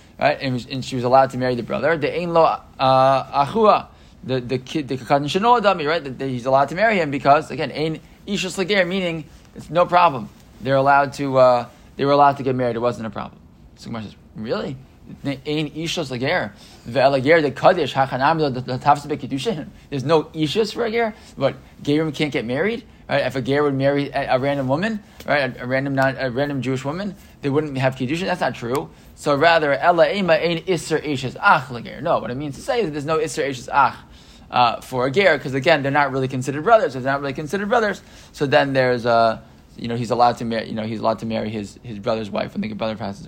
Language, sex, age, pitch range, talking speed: English, male, 20-39, 125-155 Hz, 200 wpm